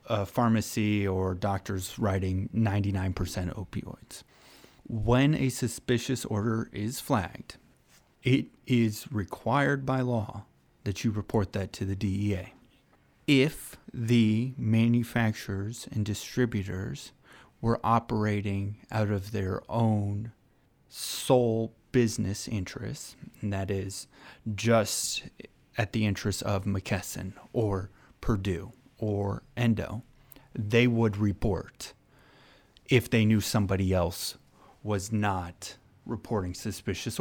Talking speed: 100 wpm